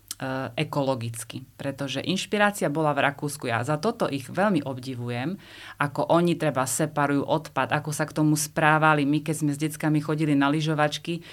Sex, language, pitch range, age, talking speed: female, Czech, 140-165 Hz, 30-49, 165 wpm